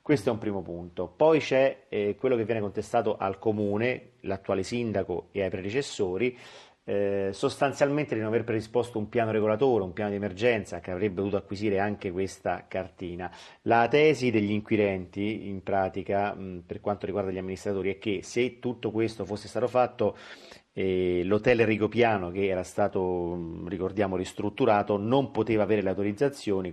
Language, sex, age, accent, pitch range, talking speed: Italian, male, 40-59, native, 90-110 Hz, 160 wpm